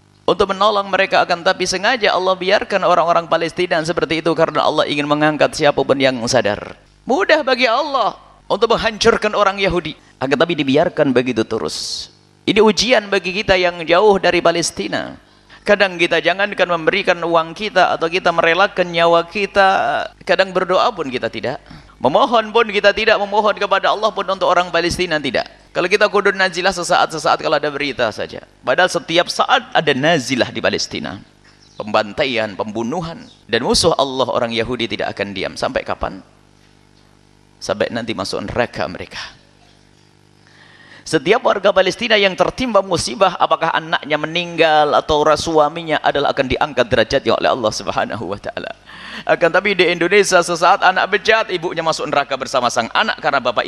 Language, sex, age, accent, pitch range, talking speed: Indonesian, male, 30-49, native, 155-200 Hz, 150 wpm